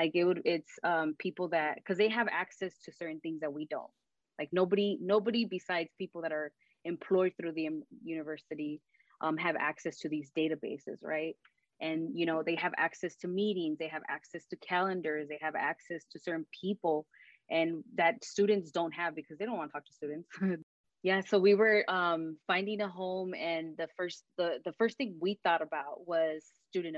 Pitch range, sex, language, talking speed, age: 155-185 Hz, female, English, 190 wpm, 20-39